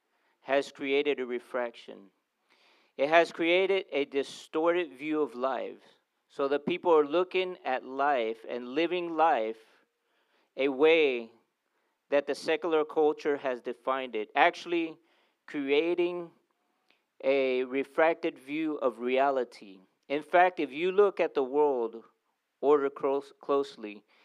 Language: English